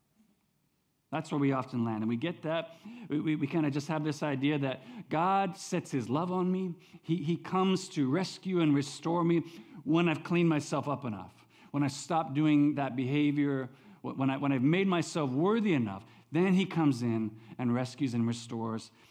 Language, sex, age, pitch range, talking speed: English, male, 50-69, 120-160 Hz, 190 wpm